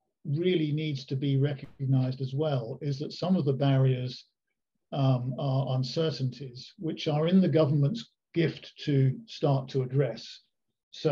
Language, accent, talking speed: English, British, 145 wpm